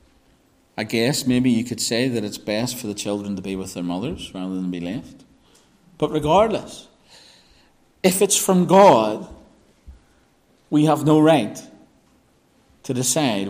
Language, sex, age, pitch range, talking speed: English, male, 40-59, 120-180 Hz, 145 wpm